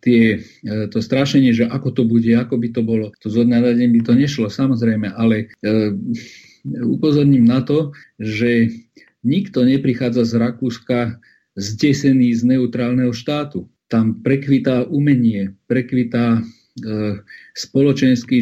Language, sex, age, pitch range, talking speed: Slovak, male, 40-59, 115-130 Hz, 125 wpm